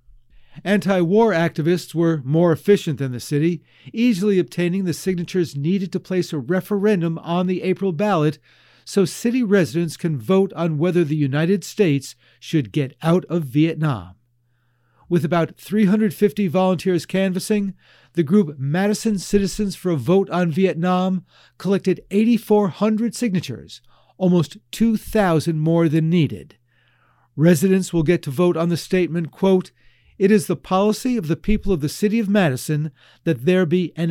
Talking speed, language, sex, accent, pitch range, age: 145 wpm, English, male, American, 155-200 Hz, 50-69